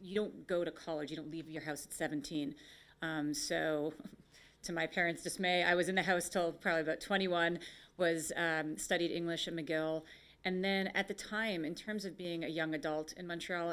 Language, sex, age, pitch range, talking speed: English, female, 30-49, 150-175 Hz, 205 wpm